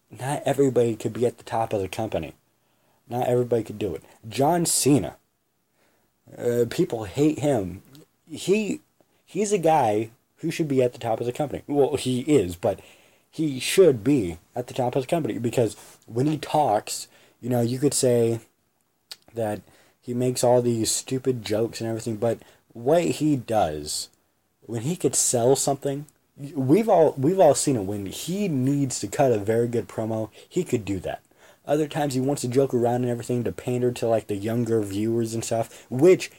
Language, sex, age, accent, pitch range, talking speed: English, male, 20-39, American, 115-145 Hz, 185 wpm